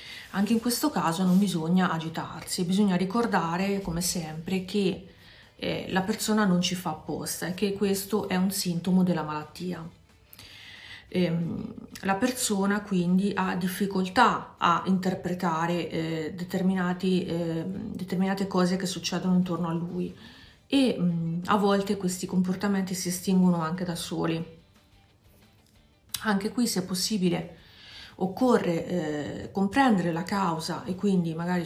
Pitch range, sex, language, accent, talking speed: 170-205 Hz, female, Italian, native, 125 wpm